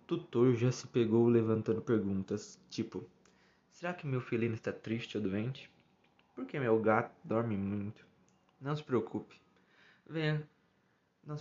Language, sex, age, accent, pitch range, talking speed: Portuguese, male, 20-39, Brazilian, 110-145 Hz, 130 wpm